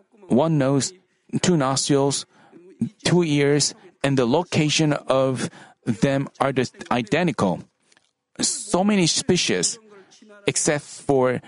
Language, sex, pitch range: Korean, male, 140-175 Hz